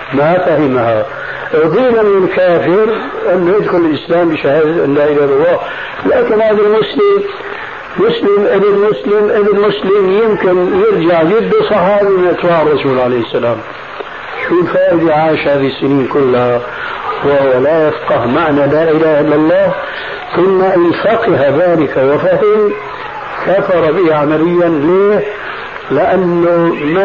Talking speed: 115 wpm